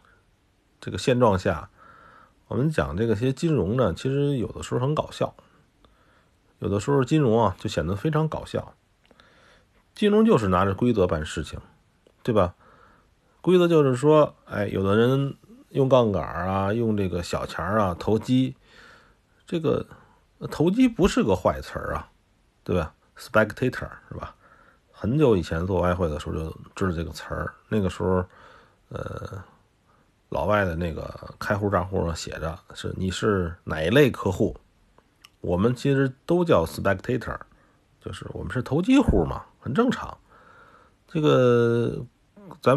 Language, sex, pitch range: Chinese, male, 95-145 Hz